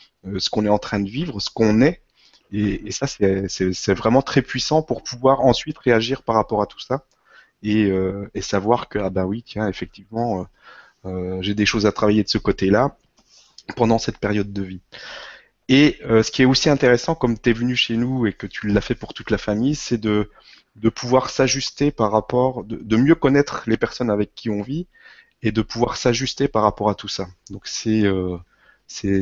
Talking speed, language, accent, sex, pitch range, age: 215 wpm, French, French, male, 100-125 Hz, 20-39